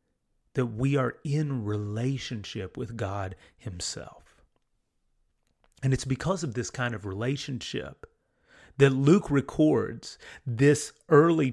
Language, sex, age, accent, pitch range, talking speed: English, male, 30-49, American, 115-145 Hz, 110 wpm